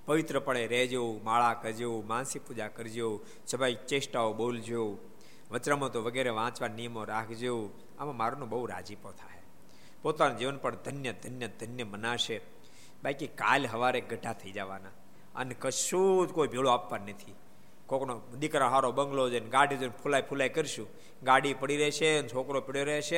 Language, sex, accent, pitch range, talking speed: Gujarati, male, native, 115-155 Hz, 145 wpm